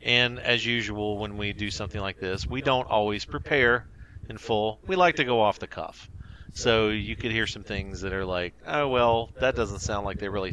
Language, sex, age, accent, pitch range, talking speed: English, male, 40-59, American, 95-115 Hz, 220 wpm